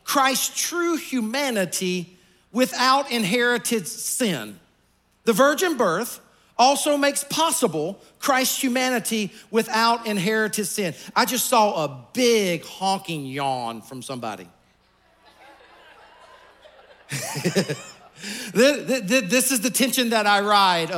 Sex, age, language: male, 50-69, English